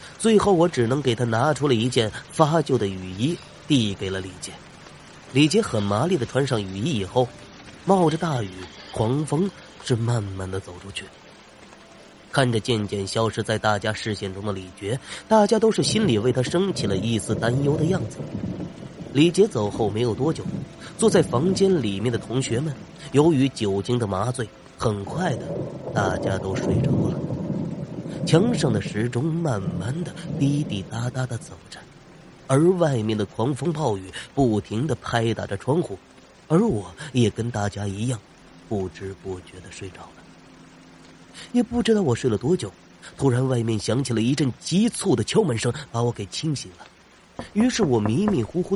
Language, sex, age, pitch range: Chinese, male, 30-49, 100-160 Hz